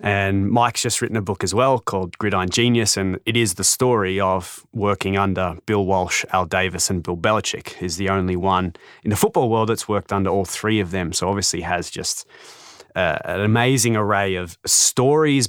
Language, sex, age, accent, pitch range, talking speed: English, male, 20-39, Australian, 95-115 Hz, 200 wpm